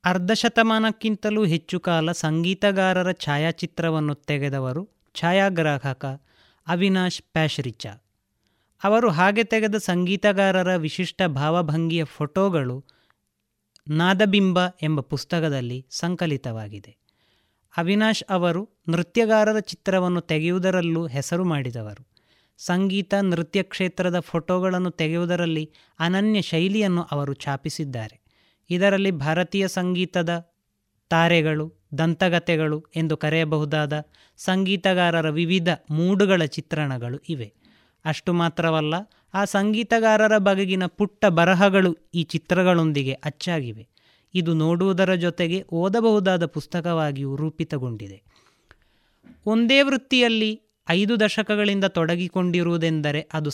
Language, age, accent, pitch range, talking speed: Kannada, 30-49, native, 150-190 Hz, 80 wpm